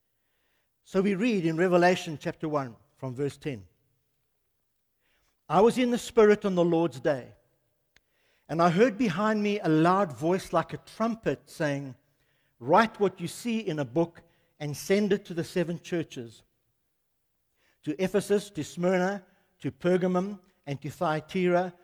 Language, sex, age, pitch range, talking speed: English, male, 60-79, 135-190 Hz, 150 wpm